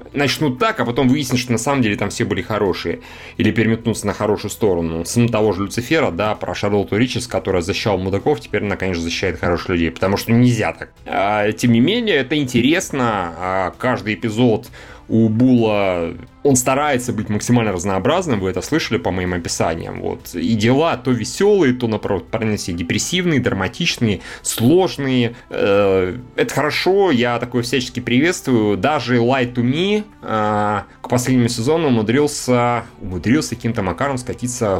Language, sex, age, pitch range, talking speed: Russian, male, 30-49, 100-125 Hz, 150 wpm